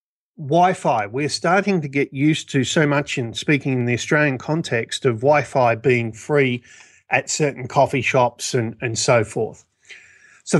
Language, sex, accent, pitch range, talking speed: English, male, Australian, 120-155 Hz, 160 wpm